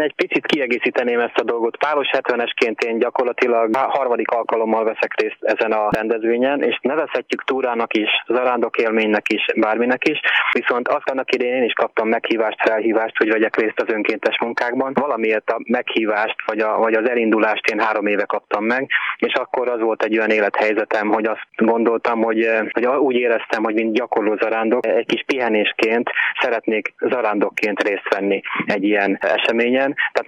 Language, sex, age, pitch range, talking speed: Hungarian, male, 20-39, 110-120 Hz, 165 wpm